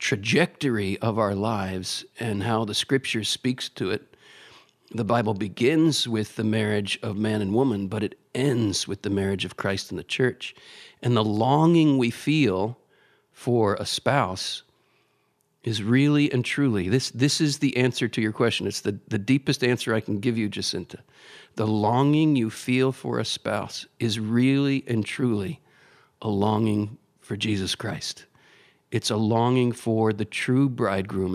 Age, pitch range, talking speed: 50-69, 105-125 Hz, 165 wpm